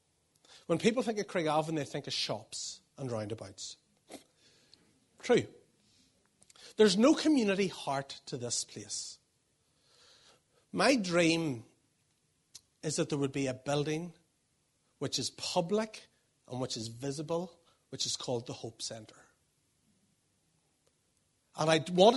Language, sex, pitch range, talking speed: English, male, 135-185 Hz, 120 wpm